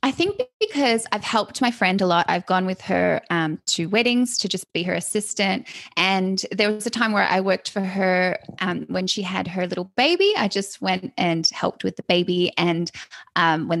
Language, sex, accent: English, female, Australian